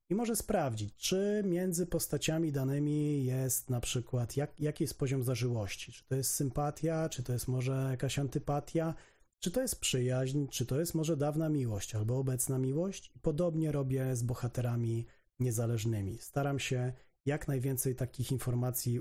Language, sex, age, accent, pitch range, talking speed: Polish, male, 40-59, native, 125-155 Hz, 160 wpm